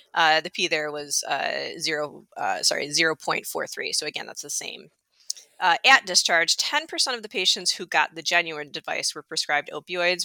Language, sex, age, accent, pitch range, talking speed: English, female, 20-39, American, 160-220 Hz, 175 wpm